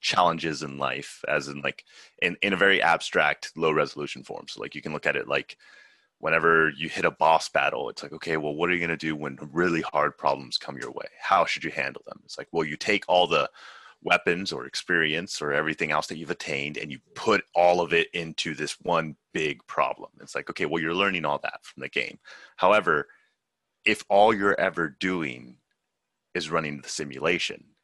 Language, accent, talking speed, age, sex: English, American, 210 wpm, 30-49, male